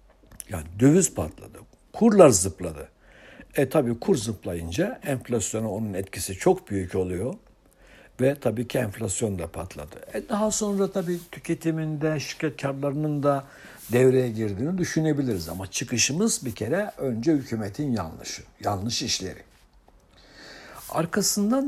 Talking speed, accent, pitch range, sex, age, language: 120 wpm, native, 105-150 Hz, male, 60-79, Turkish